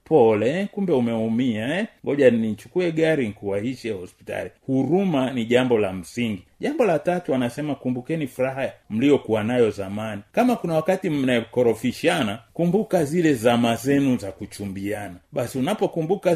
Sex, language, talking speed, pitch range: male, Swahili, 130 wpm, 120-170 Hz